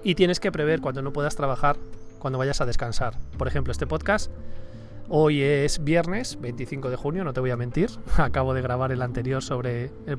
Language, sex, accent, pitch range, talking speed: Spanish, male, Spanish, 120-155 Hz, 200 wpm